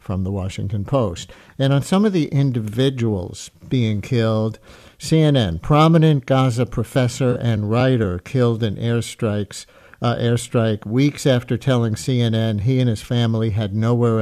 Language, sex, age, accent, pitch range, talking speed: English, male, 60-79, American, 115-130 Hz, 140 wpm